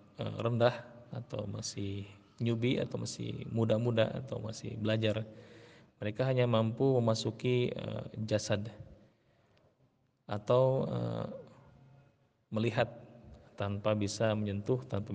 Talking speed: 85 wpm